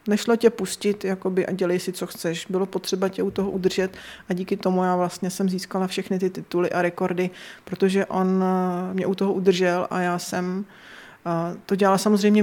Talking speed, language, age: 185 wpm, Czech, 20-39